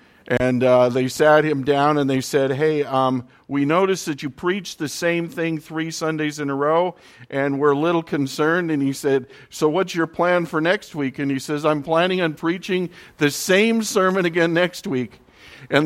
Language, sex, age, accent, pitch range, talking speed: English, male, 50-69, American, 125-160 Hz, 200 wpm